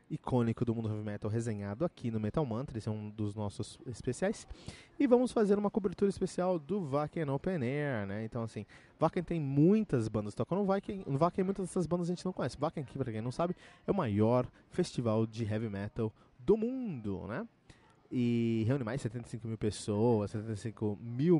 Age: 20-39